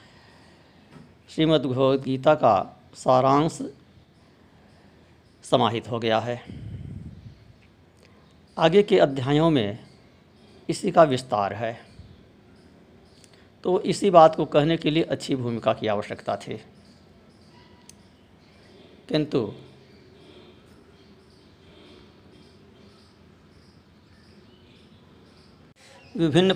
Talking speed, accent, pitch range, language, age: 70 wpm, native, 110-160 Hz, Hindi, 60-79